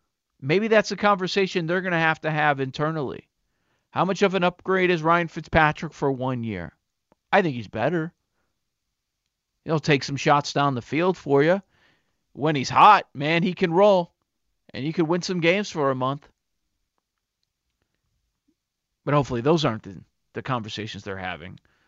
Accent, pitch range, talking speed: American, 135-180 Hz, 165 wpm